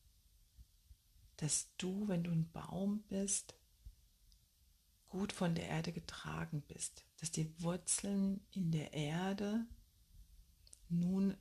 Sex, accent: female, German